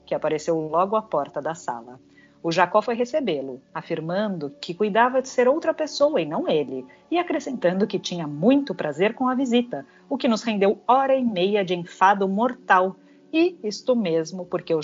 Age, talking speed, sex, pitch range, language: 40-59, 180 wpm, female, 155-235 Hz, Portuguese